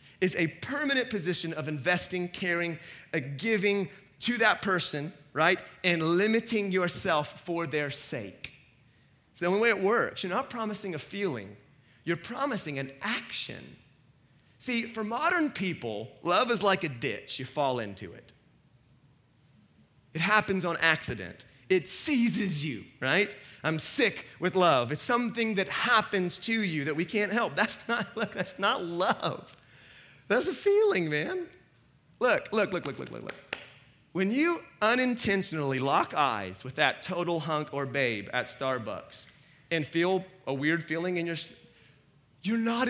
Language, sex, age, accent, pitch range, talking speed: English, male, 30-49, American, 145-230 Hz, 150 wpm